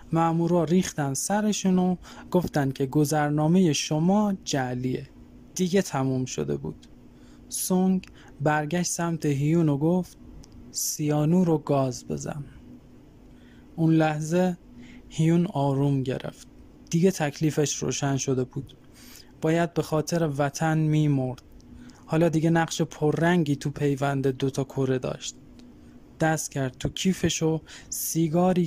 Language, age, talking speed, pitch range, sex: Persian, 20-39, 115 wpm, 135-170 Hz, male